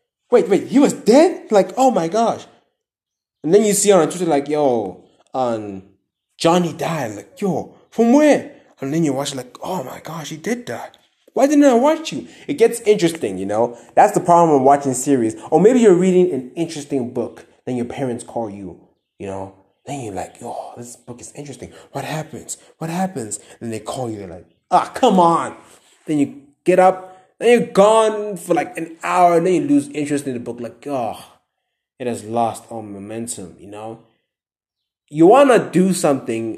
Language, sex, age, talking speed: English, male, 20-39, 195 wpm